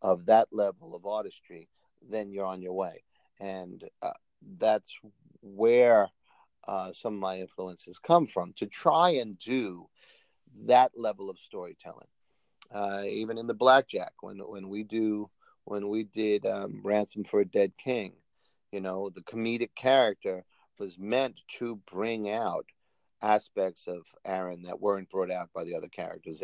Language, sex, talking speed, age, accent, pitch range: English, male, 155 wpm, 50-69, American, 95-115 Hz